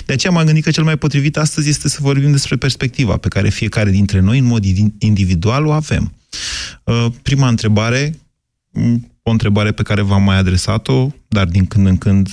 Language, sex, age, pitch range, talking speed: Romanian, male, 30-49, 95-115 Hz, 185 wpm